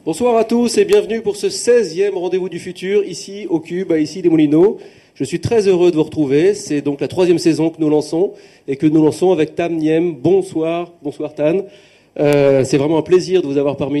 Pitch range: 150-210 Hz